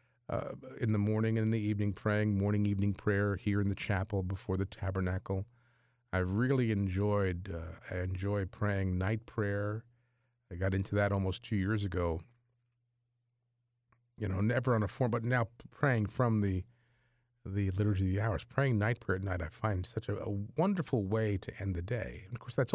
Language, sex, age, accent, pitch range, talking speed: English, male, 40-59, American, 100-120 Hz, 190 wpm